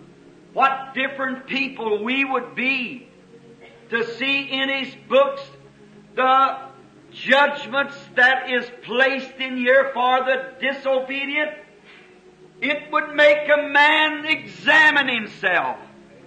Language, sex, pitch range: English, male, 245-275 Hz